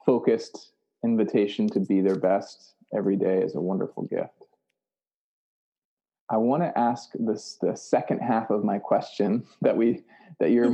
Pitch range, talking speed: 110-170 Hz, 150 wpm